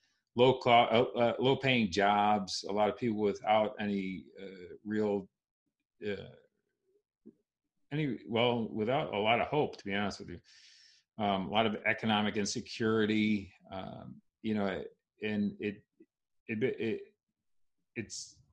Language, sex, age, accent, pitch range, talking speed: English, male, 40-59, American, 100-120 Hz, 135 wpm